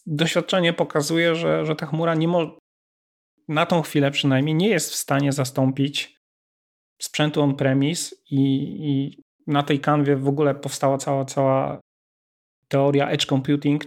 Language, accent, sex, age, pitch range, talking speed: Polish, native, male, 30-49, 135-155 Hz, 140 wpm